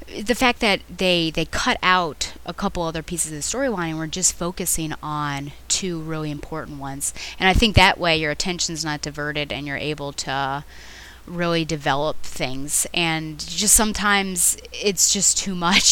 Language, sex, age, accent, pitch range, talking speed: English, female, 20-39, American, 150-190 Hz, 175 wpm